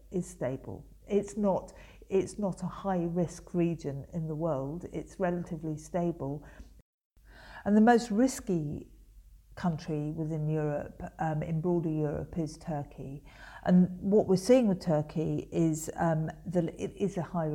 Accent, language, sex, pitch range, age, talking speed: British, English, female, 150-175 Hz, 50-69, 145 wpm